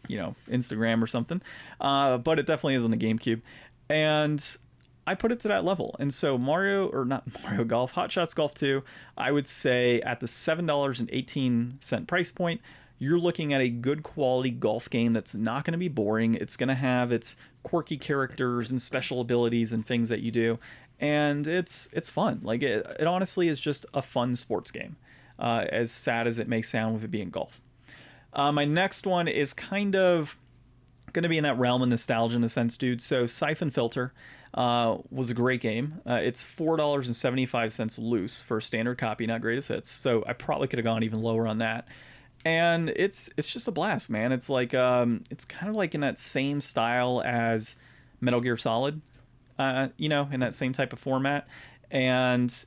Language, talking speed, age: English, 205 wpm, 30-49